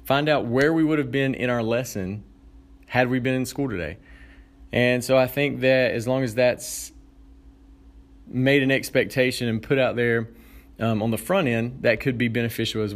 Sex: male